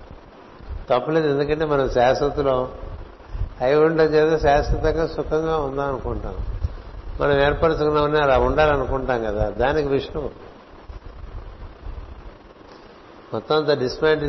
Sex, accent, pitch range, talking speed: male, native, 100-145 Hz, 90 wpm